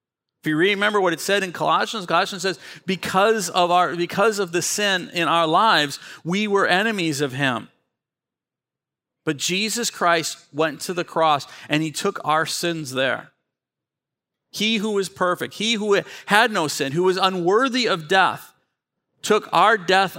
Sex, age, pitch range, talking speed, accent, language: male, 50-69, 150-205 Hz, 165 wpm, American, English